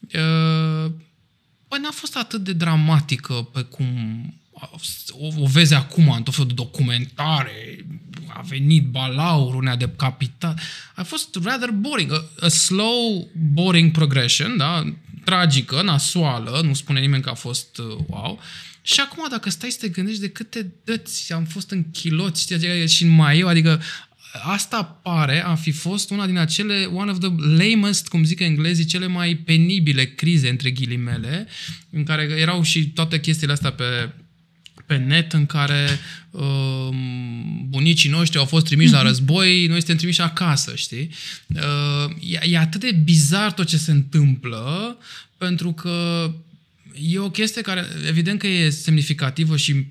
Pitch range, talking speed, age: 145-175 Hz, 155 wpm, 20-39